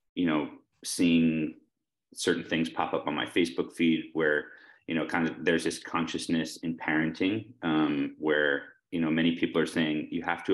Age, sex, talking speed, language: 30-49, male, 180 wpm, English